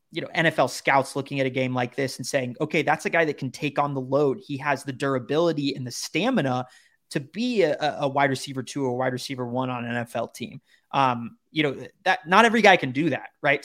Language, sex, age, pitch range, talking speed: English, male, 20-39, 130-150 Hz, 245 wpm